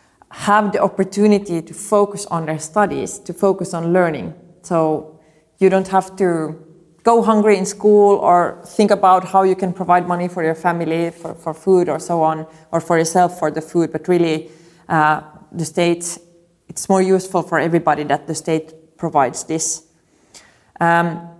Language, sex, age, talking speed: Hungarian, female, 30-49, 170 wpm